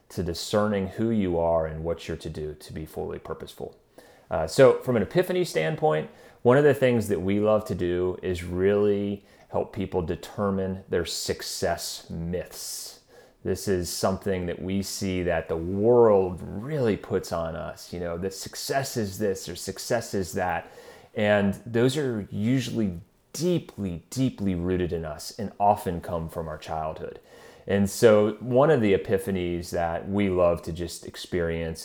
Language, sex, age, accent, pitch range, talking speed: English, male, 30-49, American, 85-100 Hz, 165 wpm